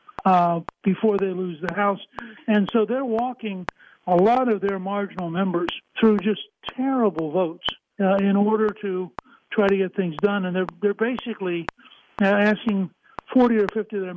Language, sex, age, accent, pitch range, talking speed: English, male, 60-79, American, 185-215 Hz, 165 wpm